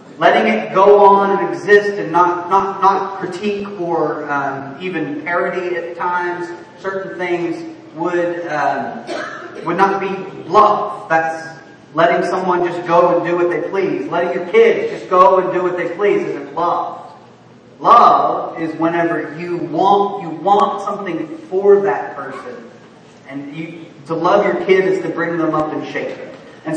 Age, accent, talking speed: 30-49, American, 165 wpm